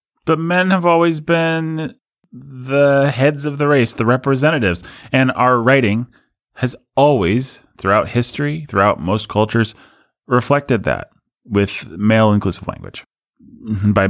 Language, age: English, 30-49